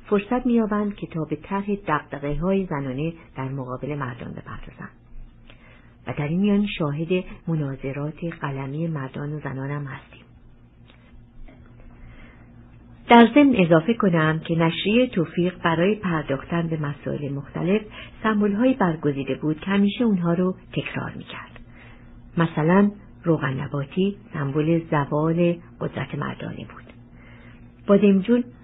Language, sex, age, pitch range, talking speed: Persian, female, 50-69, 140-200 Hz, 115 wpm